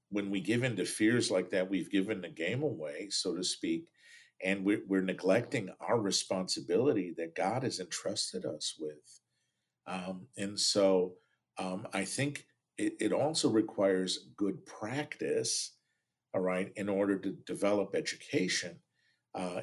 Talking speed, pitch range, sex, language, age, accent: 145 wpm, 95-115 Hz, male, English, 50-69, American